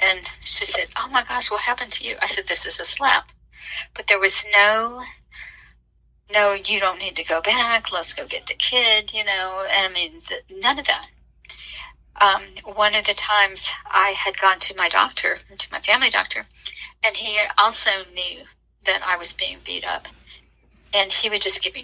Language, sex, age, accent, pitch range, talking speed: English, female, 40-59, American, 180-210 Hz, 195 wpm